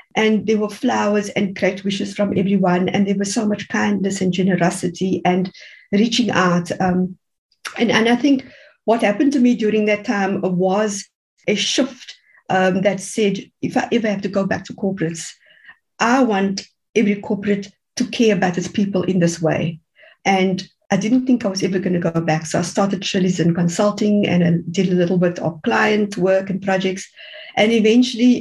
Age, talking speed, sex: 50-69, 190 wpm, female